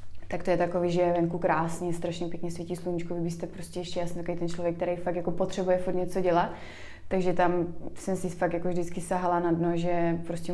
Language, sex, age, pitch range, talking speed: Slovak, female, 20-39, 175-190 Hz, 205 wpm